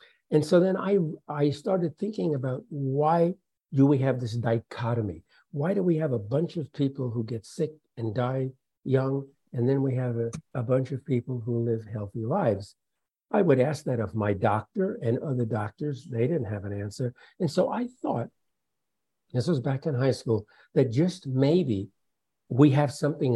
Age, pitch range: 60-79, 115-150 Hz